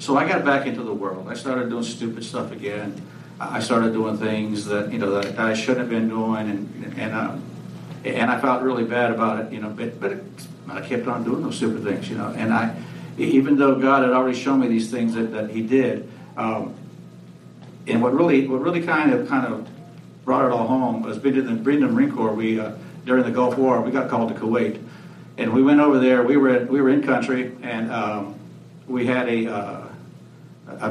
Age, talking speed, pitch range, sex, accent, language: 60-79, 220 wpm, 110-130 Hz, male, American, English